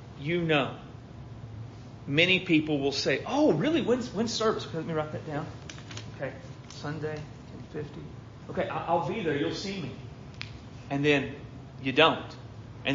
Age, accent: 40-59, American